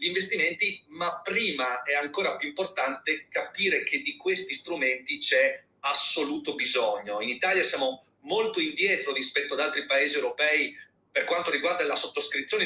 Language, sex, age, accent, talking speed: Italian, male, 40-59, native, 145 wpm